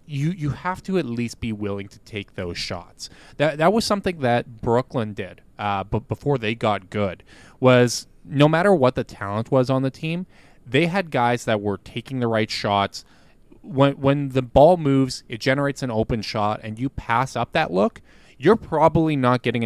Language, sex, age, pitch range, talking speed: English, male, 20-39, 105-130 Hz, 195 wpm